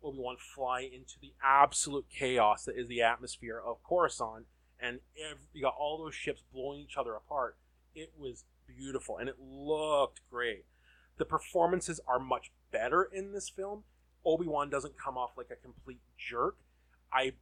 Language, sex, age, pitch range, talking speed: English, male, 20-39, 115-145 Hz, 160 wpm